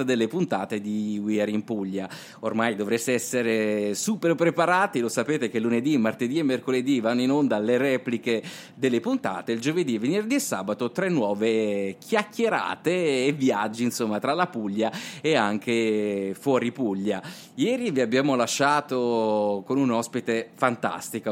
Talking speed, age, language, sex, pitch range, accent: 145 wpm, 30-49, Italian, male, 115-145 Hz, native